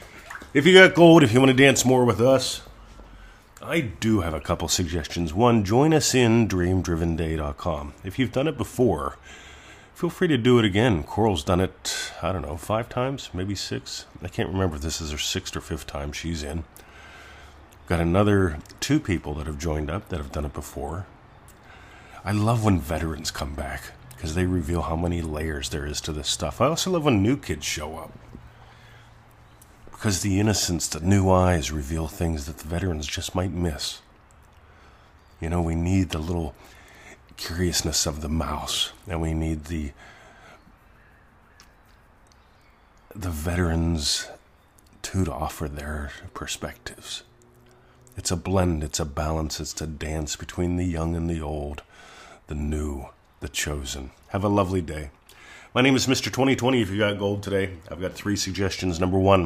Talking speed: 170 wpm